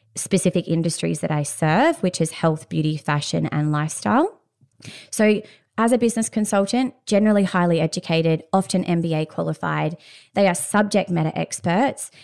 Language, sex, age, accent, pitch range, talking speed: English, female, 20-39, Australian, 160-200 Hz, 135 wpm